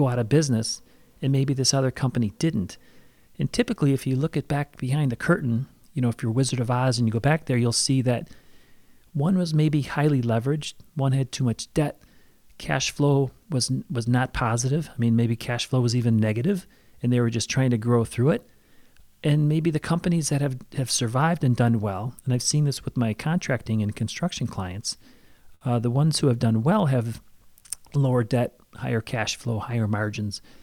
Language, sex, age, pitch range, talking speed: English, male, 40-59, 120-140 Hz, 200 wpm